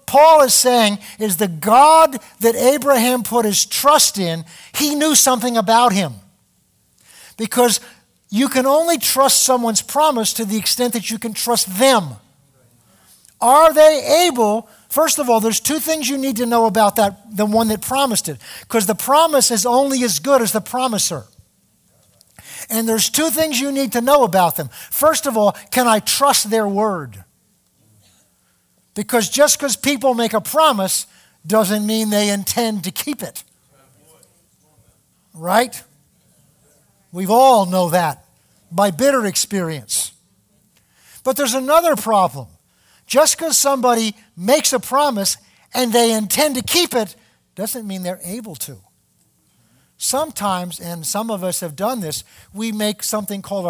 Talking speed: 150 wpm